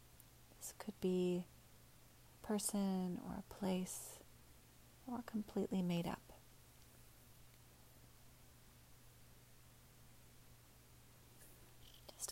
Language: English